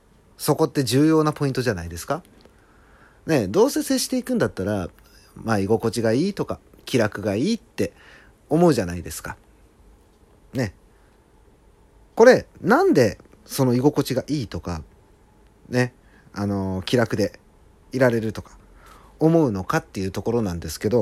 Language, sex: Japanese, male